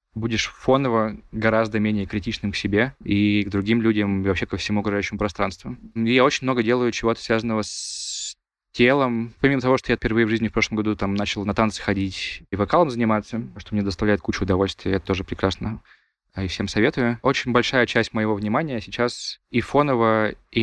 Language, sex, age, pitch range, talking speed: Russian, male, 20-39, 105-120 Hz, 185 wpm